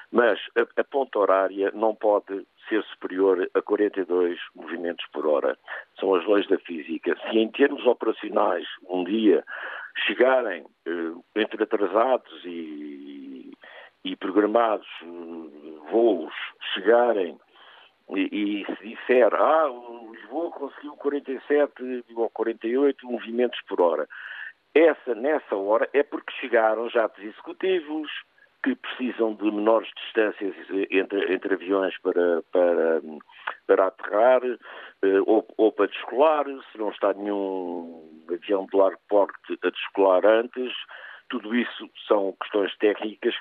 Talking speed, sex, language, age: 120 wpm, male, Portuguese, 50-69